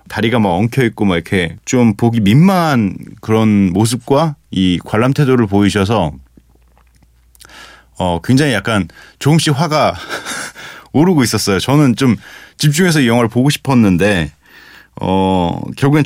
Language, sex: Korean, male